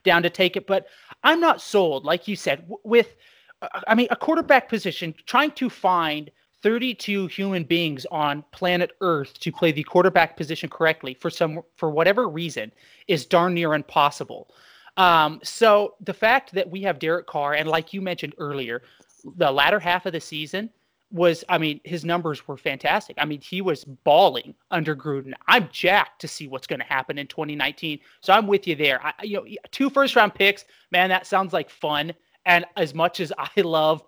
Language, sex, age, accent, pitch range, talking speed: English, male, 30-49, American, 145-190 Hz, 190 wpm